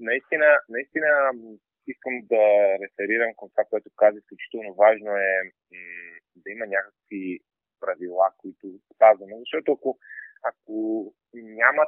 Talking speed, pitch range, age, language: 115 wpm, 105-145 Hz, 30-49, Bulgarian